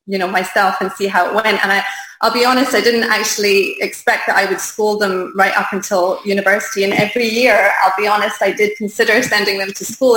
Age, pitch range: 20-39, 195-230 Hz